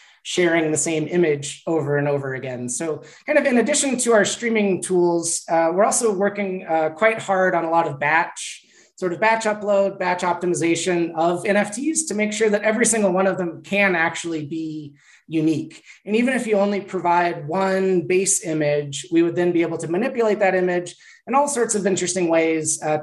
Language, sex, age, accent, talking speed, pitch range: English, male, 30-49, American, 195 wpm, 160-200 Hz